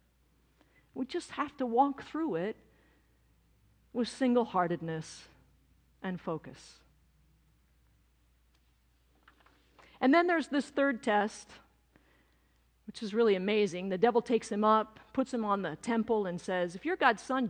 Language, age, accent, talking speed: English, 50-69, American, 125 wpm